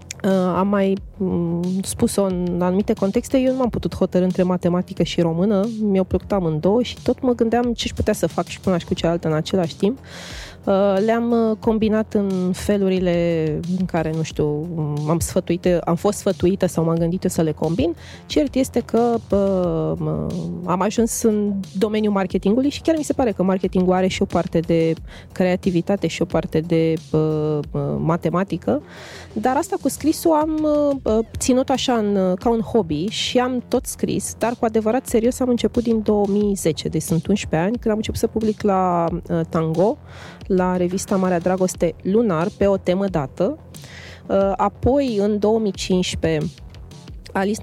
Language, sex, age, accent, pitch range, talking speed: Romanian, female, 20-39, native, 170-220 Hz, 160 wpm